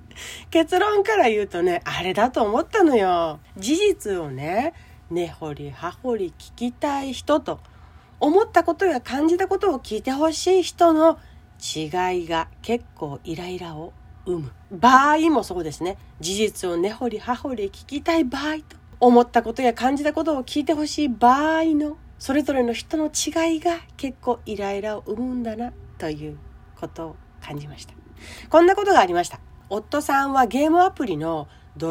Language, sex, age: Japanese, female, 40-59